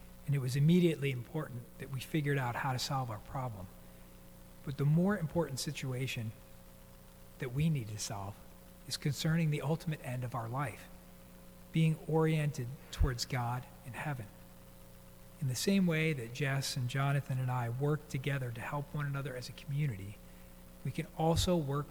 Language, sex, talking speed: English, male, 165 wpm